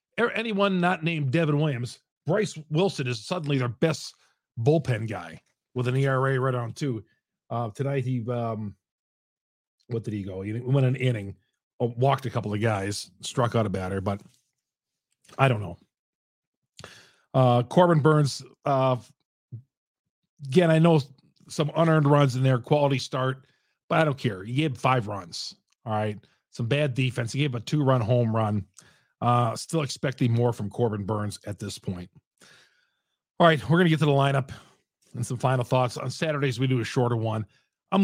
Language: English